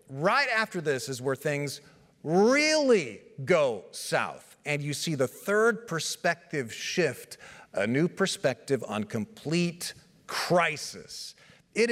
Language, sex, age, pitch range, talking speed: English, male, 40-59, 140-215 Hz, 115 wpm